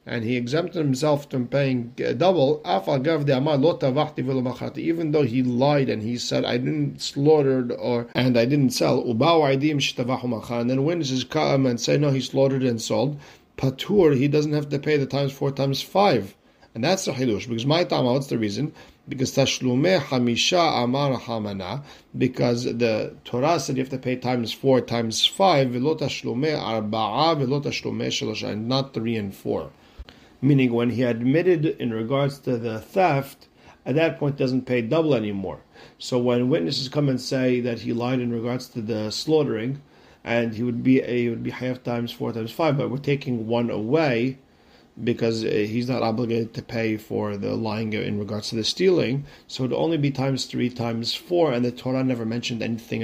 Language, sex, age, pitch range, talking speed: English, male, 50-69, 115-140 Hz, 165 wpm